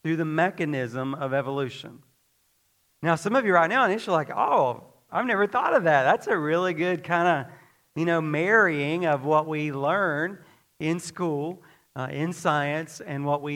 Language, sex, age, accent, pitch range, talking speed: English, male, 40-59, American, 130-165 Hz, 175 wpm